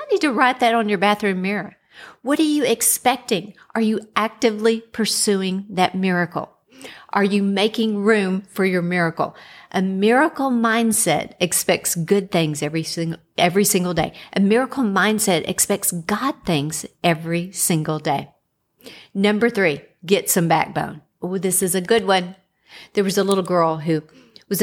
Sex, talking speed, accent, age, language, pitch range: female, 150 wpm, American, 50-69, English, 180-230 Hz